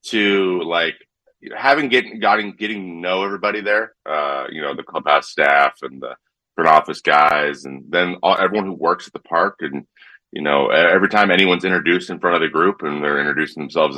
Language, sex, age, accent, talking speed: English, male, 30-49, American, 190 wpm